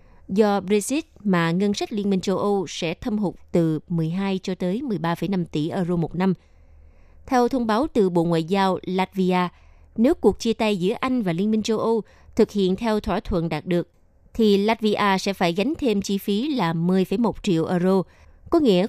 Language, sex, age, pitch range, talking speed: Vietnamese, female, 20-39, 175-225 Hz, 195 wpm